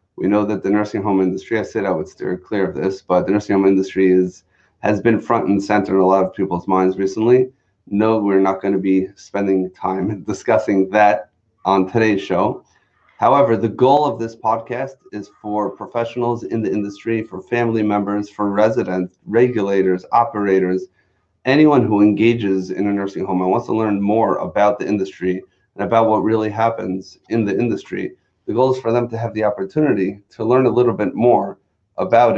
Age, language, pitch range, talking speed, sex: 30-49, English, 95-115 Hz, 195 wpm, male